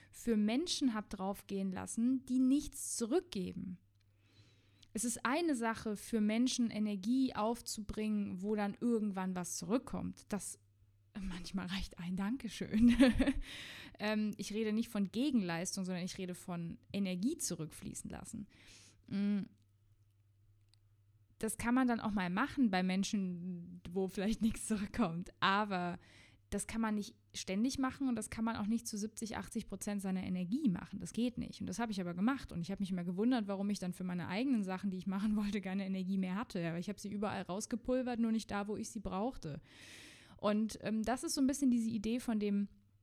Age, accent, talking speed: 20-39, German, 175 wpm